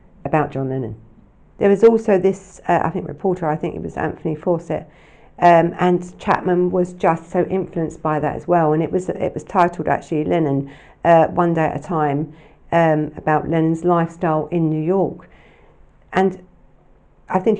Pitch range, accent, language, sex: 155-185 Hz, British, English, female